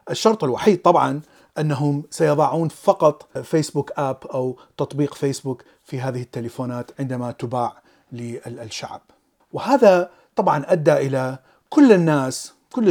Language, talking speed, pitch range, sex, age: Arabic, 110 wpm, 135-175 Hz, male, 40-59